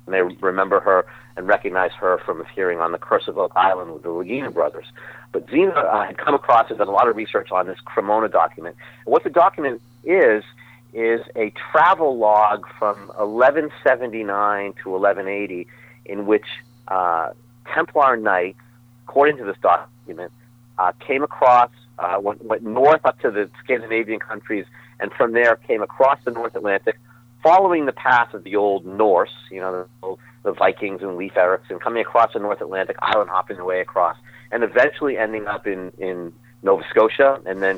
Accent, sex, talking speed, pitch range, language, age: American, male, 180 wpm, 100-120 Hz, English, 40-59